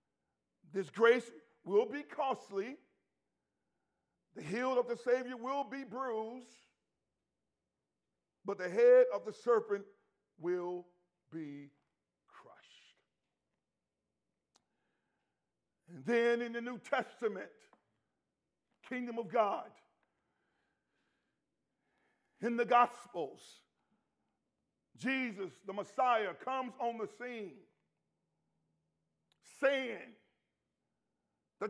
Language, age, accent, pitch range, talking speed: English, 50-69, American, 165-250 Hz, 80 wpm